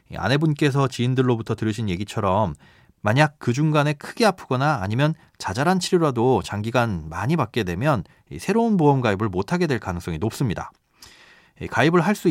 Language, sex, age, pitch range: Korean, male, 30-49, 110-160 Hz